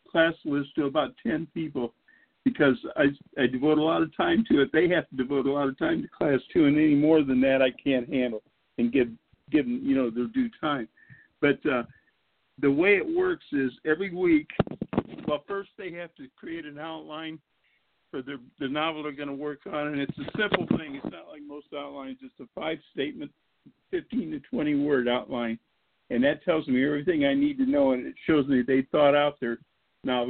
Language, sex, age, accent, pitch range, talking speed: English, male, 50-69, American, 135-210 Hz, 210 wpm